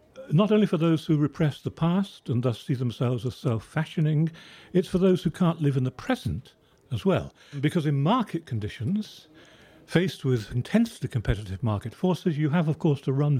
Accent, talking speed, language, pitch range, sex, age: British, 185 wpm, English, 120-170 Hz, male, 50-69